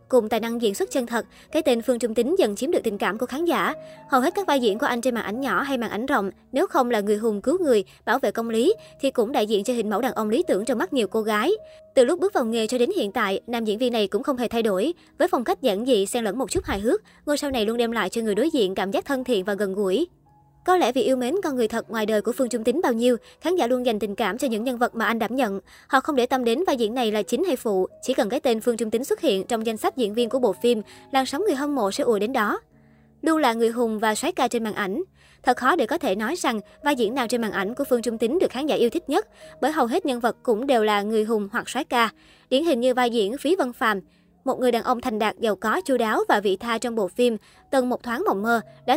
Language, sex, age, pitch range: Vietnamese, male, 20-39, 220-270 Hz